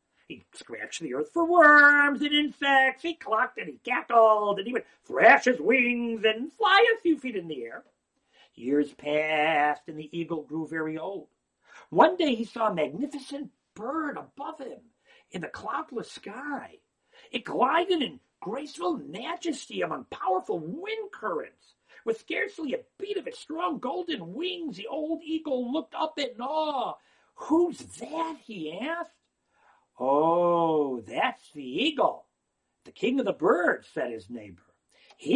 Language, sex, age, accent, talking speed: English, male, 50-69, American, 155 wpm